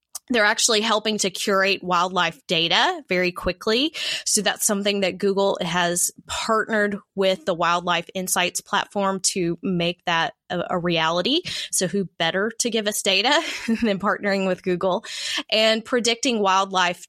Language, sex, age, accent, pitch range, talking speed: English, female, 20-39, American, 175-210 Hz, 145 wpm